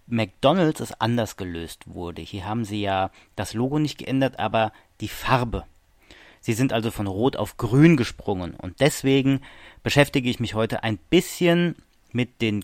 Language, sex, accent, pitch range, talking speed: German, male, German, 100-135 Hz, 160 wpm